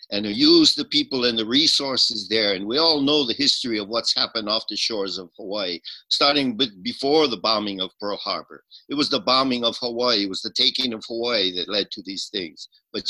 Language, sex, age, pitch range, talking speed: English, male, 50-69, 120-170 Hz, 220 wpm